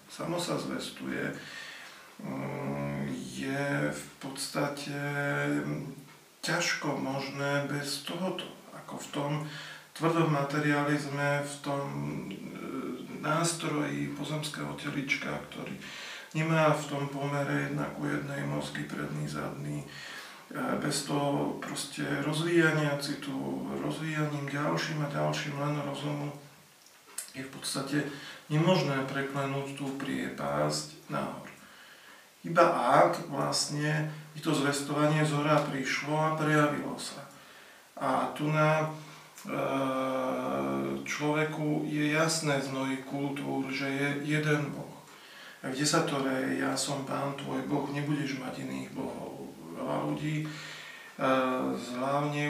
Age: 40-59